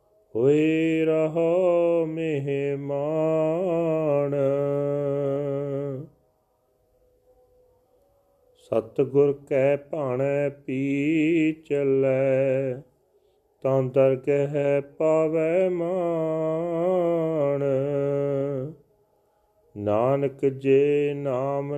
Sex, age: male, 40-59